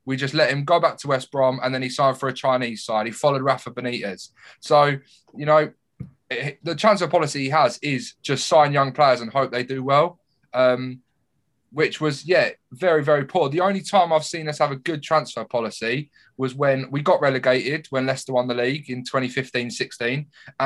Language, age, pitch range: English, 20-39, 125-150 Hz